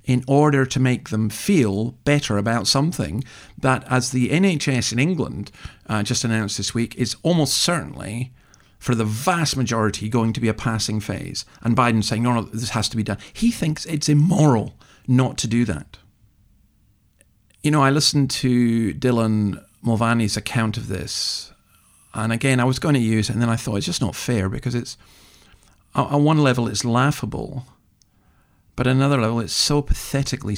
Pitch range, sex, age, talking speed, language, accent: 105-130 Hz, male, 50-69, 175 wpm, English, British